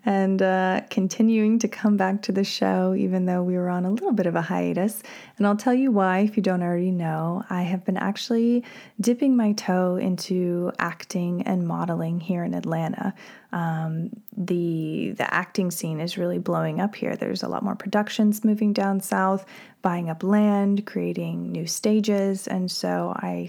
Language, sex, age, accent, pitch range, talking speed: English, female, 20-39, American, 175-205 Hz, 180 wpm